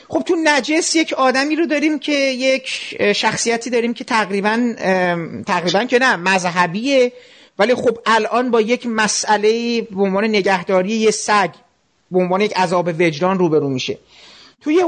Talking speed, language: 145 wpm, Persian